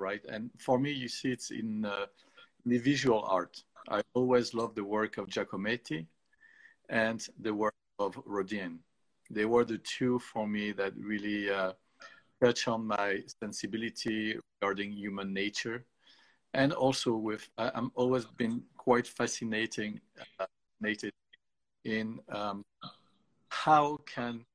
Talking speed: 130 wpm